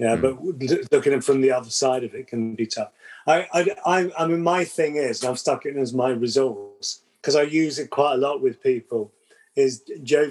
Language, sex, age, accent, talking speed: English, male, 30-49, British, 225 wpm